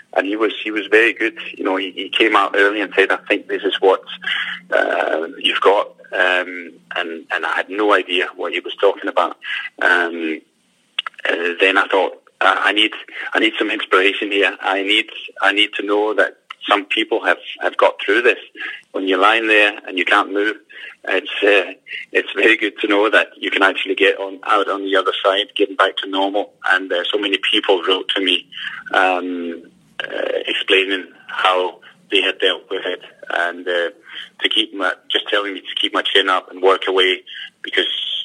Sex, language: male, English